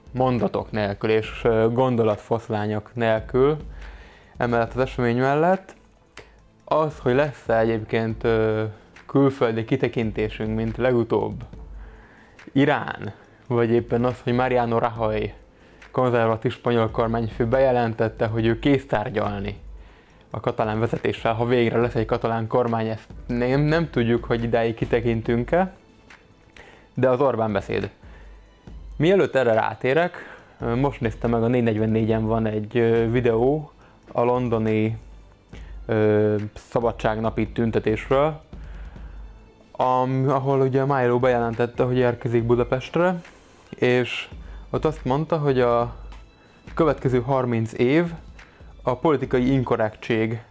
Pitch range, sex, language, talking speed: 110-125 Hz, male, Hungarian, 105 wpm